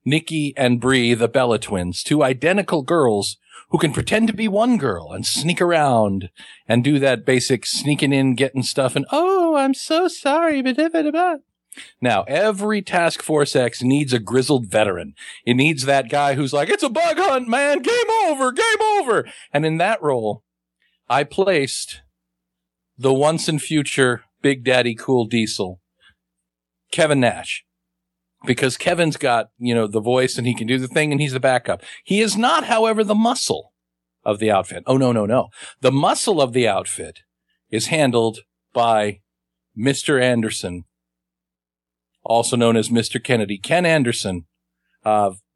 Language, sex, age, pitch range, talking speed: English, male, 50-69, 105-155 Hz, 160 wpm